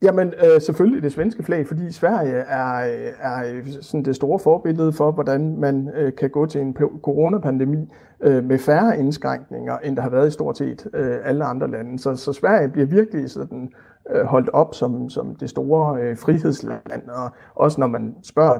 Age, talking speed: 60-79, 165 wpm